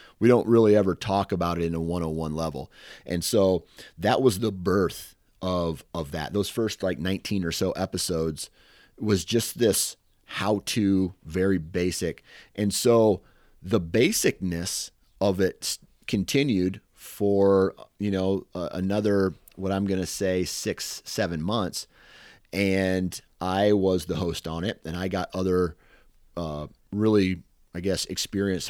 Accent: American